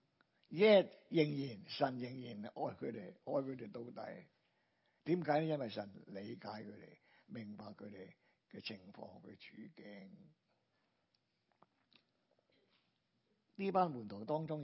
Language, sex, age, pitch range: Chinese, male, 60-79, 115-150 Hz